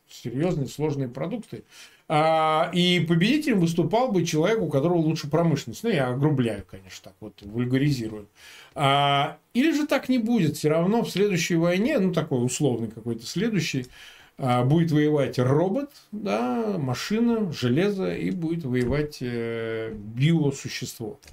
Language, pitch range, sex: Russian, 125-165 Hz, male